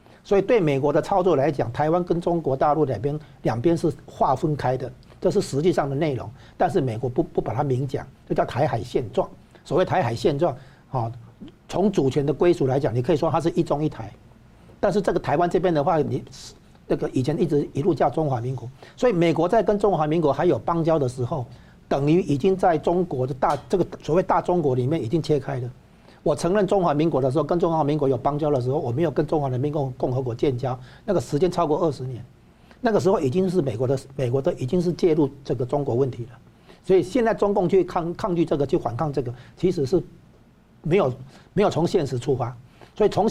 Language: Chinese